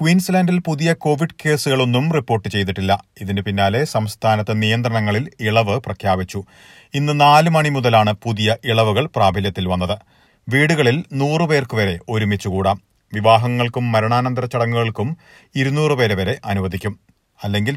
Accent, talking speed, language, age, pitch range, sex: native, 110 wpm, Malayalam, 30-49, 105-130 Hz, male